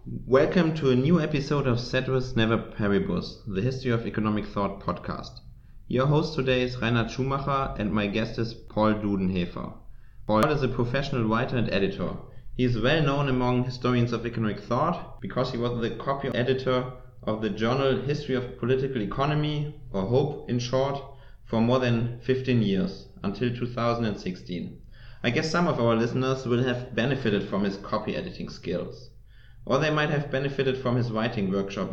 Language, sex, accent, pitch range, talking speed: English, male, German, 110-135 Hz, 170 wpm